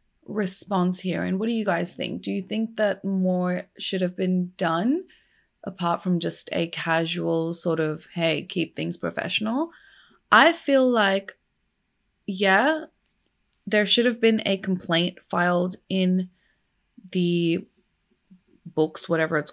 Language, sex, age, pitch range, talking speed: English, female, 20-39, 175-220 Hz, 135 wpm